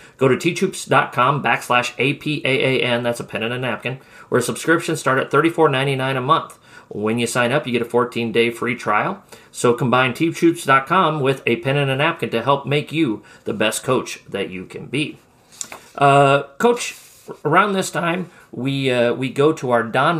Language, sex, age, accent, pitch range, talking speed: English, male, 40-59, American, 120-155 Hz, 180 wpm